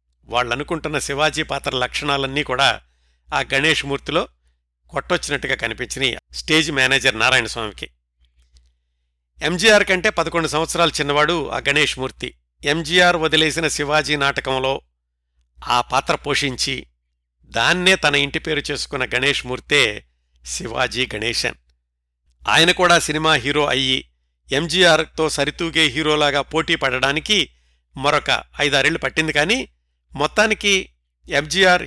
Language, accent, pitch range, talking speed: Telugu, native, 105-160 Hz, 105 wpm